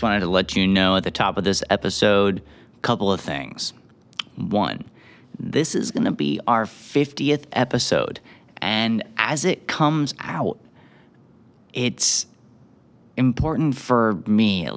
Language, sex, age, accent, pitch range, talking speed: English, male, 30-49, American, 95-125 Hz, 140 wpm